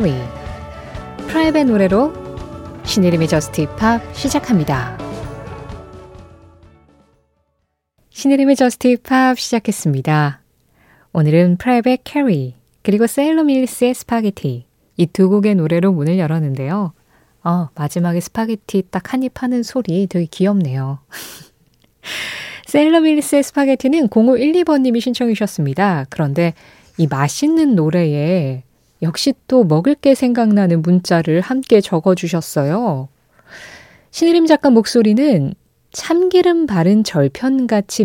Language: Korean